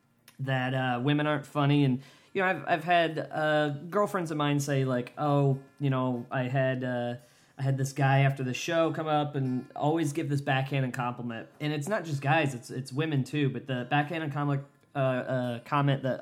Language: English